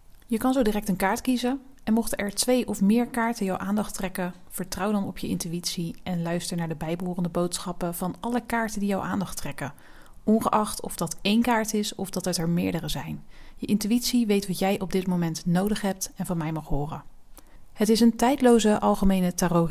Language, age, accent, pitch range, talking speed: Dutch, 30-49, Dutch, 175-220 Hz, 205 wpm